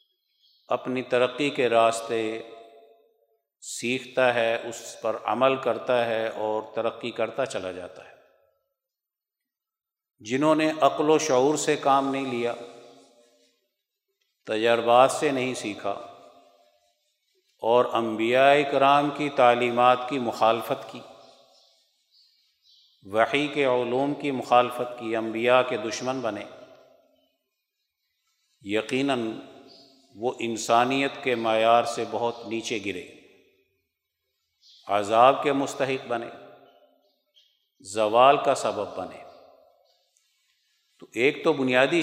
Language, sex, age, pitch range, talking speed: Urdu, male, 50-69, 115-140 Hz, 100 wpm